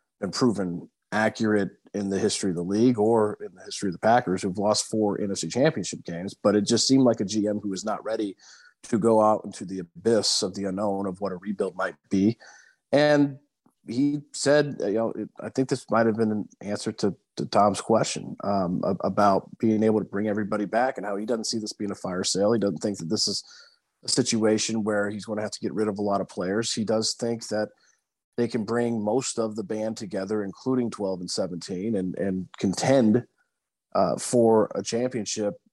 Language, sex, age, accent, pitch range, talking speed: English, male, 40-59, American, 100-115 Hz, 215 wpm